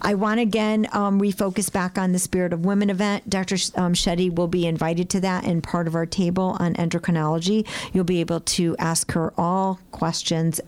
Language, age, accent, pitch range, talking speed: English, 50-69, American, 165-190 Hz, 210 wpm